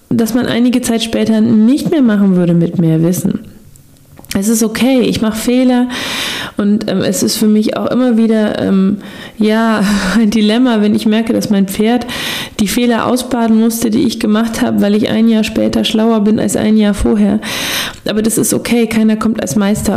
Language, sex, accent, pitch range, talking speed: German, female, German, 190-230 Hz, 190 wpm